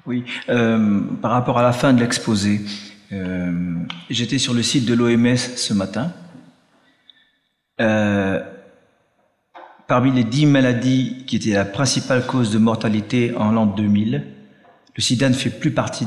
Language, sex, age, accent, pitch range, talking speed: French, male, 40-59, French, 105-130 Hz, 145 wpm